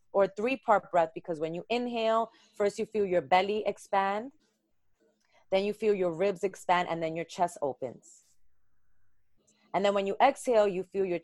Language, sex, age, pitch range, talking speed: English, female, 30-49, 160-200 Hz, 170 wpm